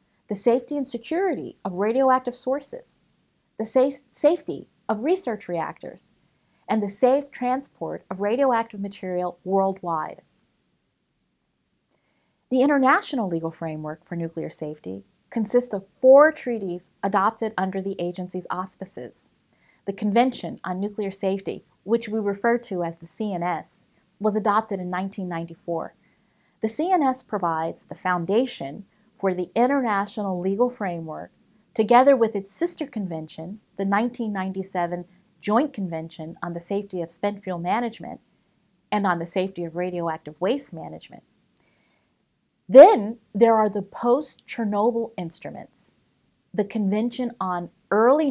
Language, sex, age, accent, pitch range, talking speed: English, female, 30-49, American, 175-235 Hz, 120 wpm